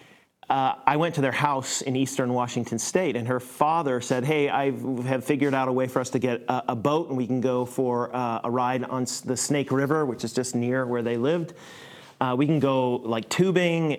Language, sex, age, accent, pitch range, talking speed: English, male, 30-49, American, 125-145 Hz, 225 wpm